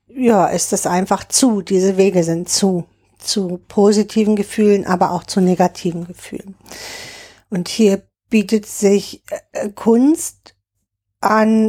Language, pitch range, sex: German, 185-215 Hz, female